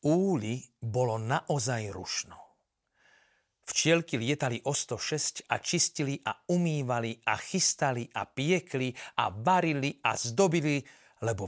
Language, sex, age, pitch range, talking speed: Slovak, male, 40-59, 115-150 Hz, 110 wpm